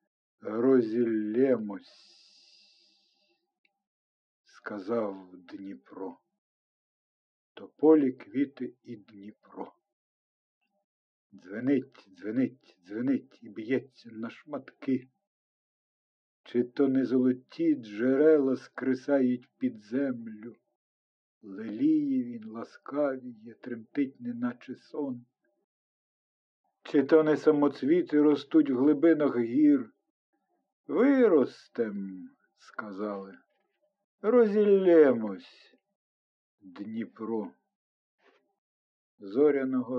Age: 50-69